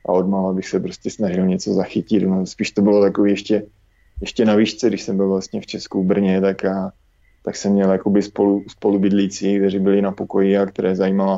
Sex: male